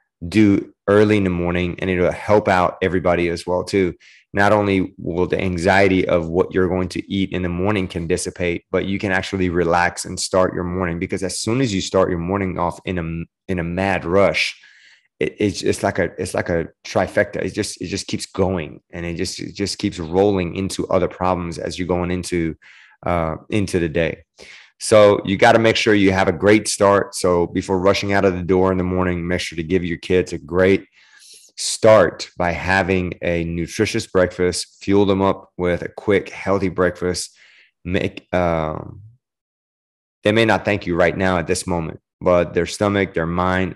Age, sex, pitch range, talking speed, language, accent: 20-39, male, 85-100 Hz, 200 wpm, English, American